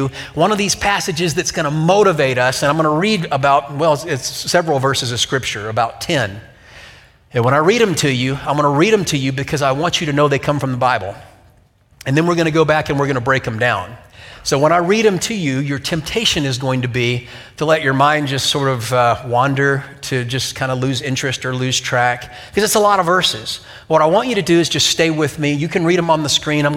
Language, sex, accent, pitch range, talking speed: English, male, American, 125-165 Hz, 255 wpm